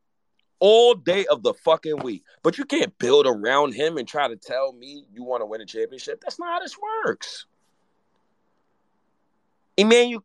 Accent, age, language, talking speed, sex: American, 30-49, English, 165 wpm, male